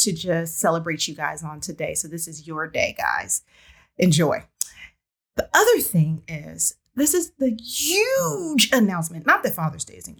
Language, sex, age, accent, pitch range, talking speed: English, female, 30-49, American, 175-290 Hz, 160 wpm